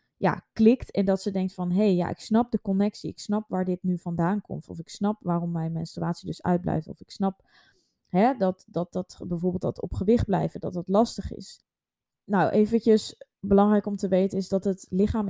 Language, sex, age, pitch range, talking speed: Dutch, female, 20-39, 180-205 Hz, 215 wpm